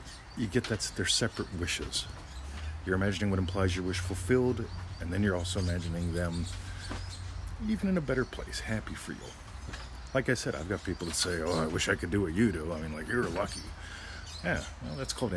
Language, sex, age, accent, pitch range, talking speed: English, male, 40-59, American, 80-100 Hz, 205 wpm